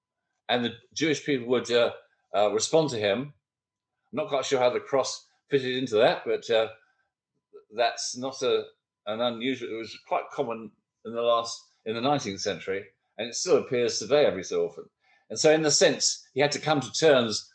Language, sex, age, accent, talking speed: English, male, 50-69, British, 195 wpm